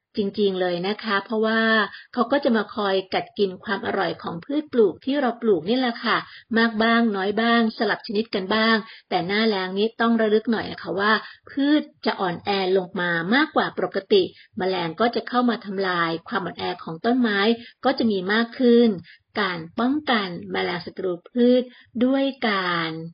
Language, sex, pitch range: English, female, 185-235 Hz